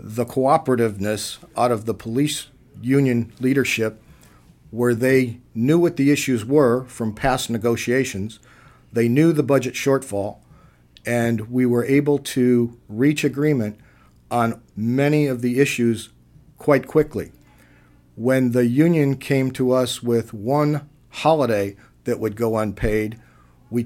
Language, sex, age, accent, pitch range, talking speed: English, male, 50-69, American, 115-135 Hz, 130 wpm